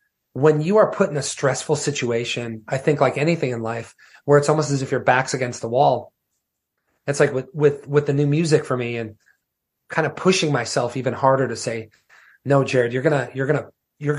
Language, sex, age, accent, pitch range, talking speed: English, male, 30-49, American, 125-150 Hz, 220 wpm